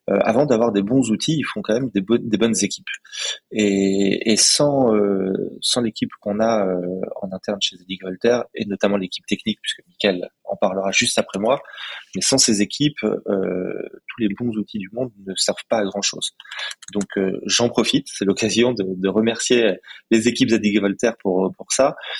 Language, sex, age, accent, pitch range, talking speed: French, male, 20-39, French, 100-115 Hz, 190 wpm